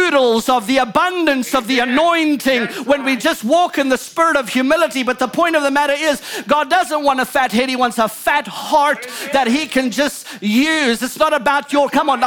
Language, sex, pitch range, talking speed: English, male, 270-315 Hz, 215 wpm